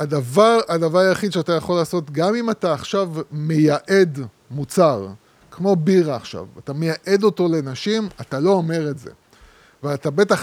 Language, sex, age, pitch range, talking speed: Hebrew, male, 20-39, 150-195 Hz, 150 wpm